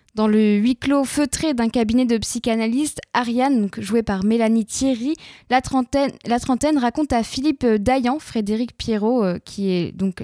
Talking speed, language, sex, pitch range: 170 wpm, French, female, 215-260 Hz